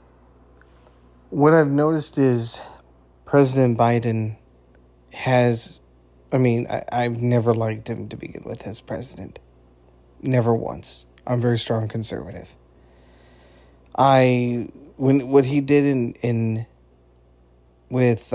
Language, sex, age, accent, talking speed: English, male, 30-49, American, 105 wpm